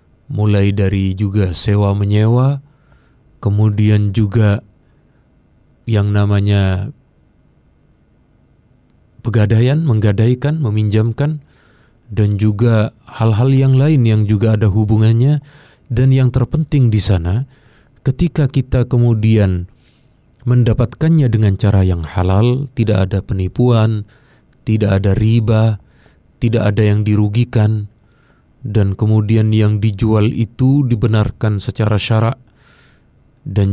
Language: Indonesian